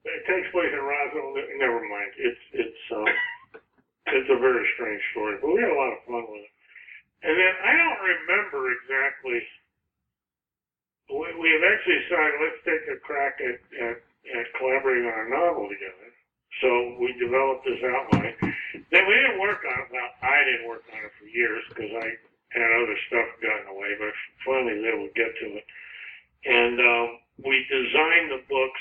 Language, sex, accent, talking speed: English, male, American, 175 wpm